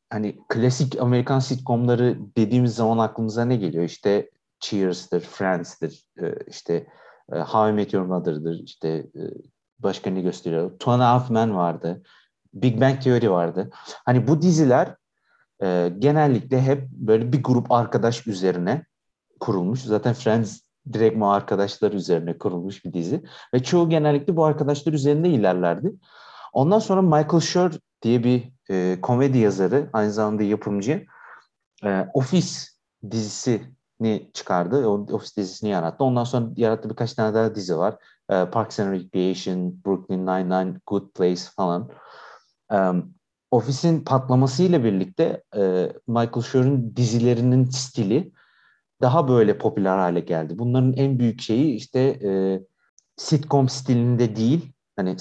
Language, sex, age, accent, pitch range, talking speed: Turkish, male, 50-69, native, 100-130 Hz, 120 wpm